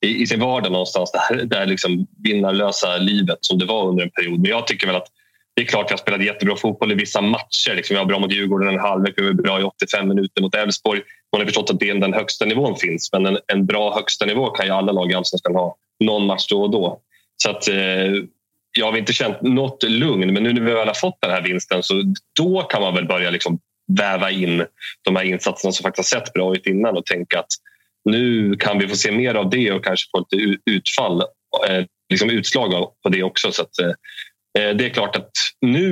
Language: Swedish